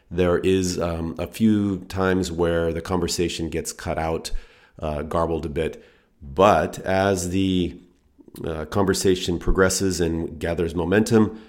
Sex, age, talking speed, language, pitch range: male, 40-59, 130 wpm, English, 85-95 Hz